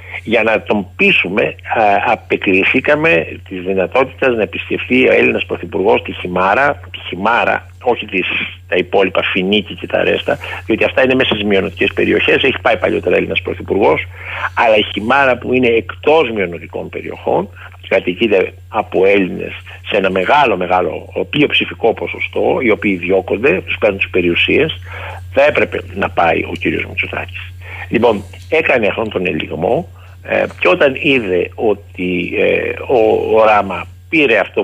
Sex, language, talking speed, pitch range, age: male, Greek, 140 wpm, 90-115 Hz, 60-79